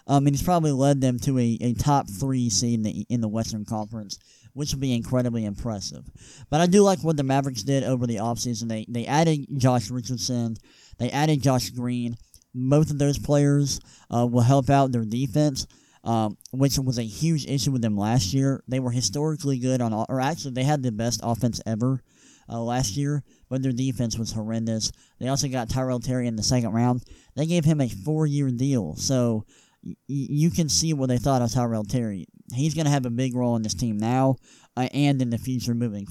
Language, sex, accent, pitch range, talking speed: English, male, American, 120-140 Hz, 210 wpm